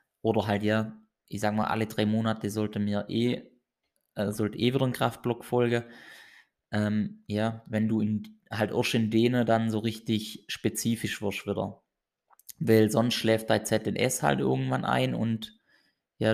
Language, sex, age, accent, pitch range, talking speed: German, male, 20-39, German, 105-115 Hz, 160 wpm